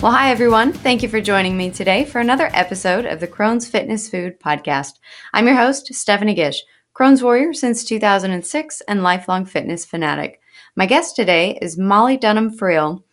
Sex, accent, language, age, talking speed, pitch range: female, American, English, 30-49, 170 wpm, 175-225 Hz